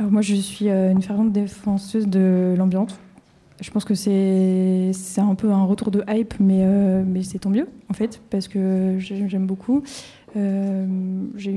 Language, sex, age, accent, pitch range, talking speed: French, female, 20-39, French, 185-205 Hz, 180 wpm